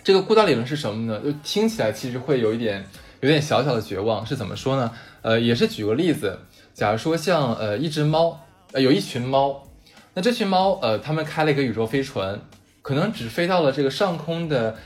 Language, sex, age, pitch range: Chinese, male, 20-39, 110-175 Hz